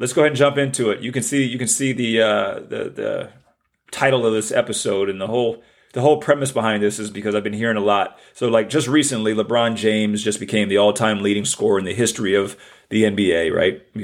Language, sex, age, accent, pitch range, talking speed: English, male, 30-49, American, 105-135 Hz, 235 wpm